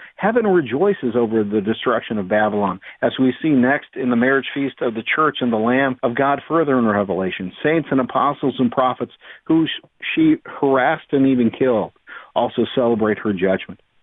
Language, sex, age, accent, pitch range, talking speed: English, male, 50-69, American, 115-140 Hz, 175 wpm